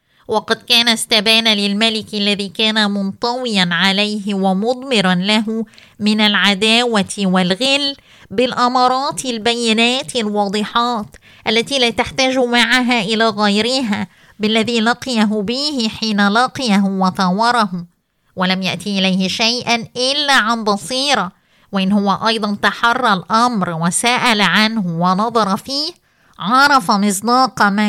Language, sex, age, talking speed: Arabic, female, 20-39, 100 wpm